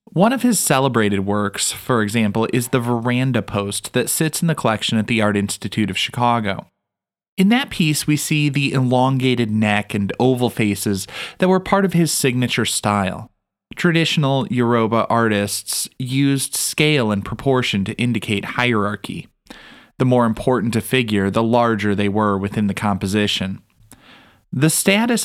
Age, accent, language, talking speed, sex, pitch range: 30-49, American, English, 150 wpm, male, 105-140 Hz